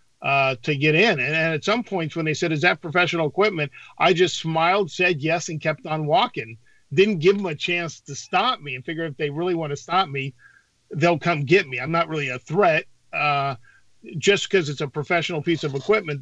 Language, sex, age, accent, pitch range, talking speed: English, male, 50-69, American, 140-175 Hz, 220 wpm